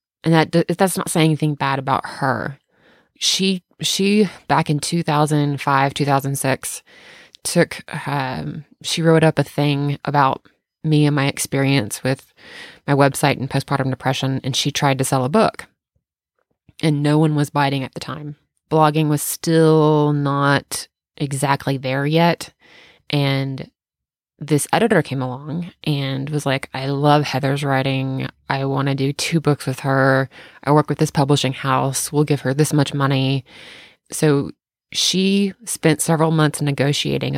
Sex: female